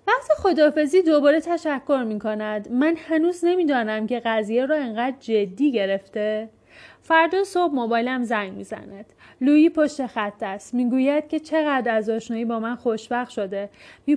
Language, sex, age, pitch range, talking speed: Persian, female, 30-49, 220-315 Hz, 150 wpm